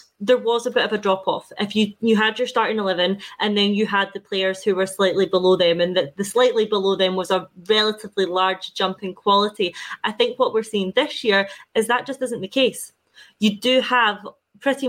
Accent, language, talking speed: British, English, 225 wpm